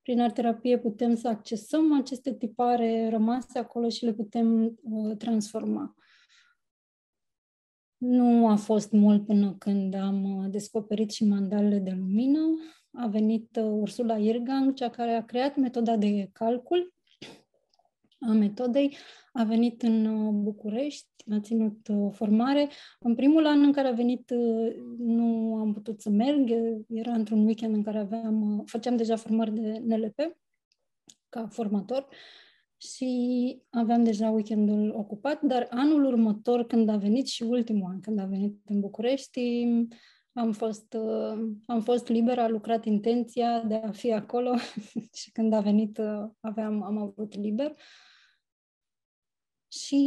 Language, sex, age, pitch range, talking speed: Romanian, female, 20-39, 215-250 Hz, 135 wpm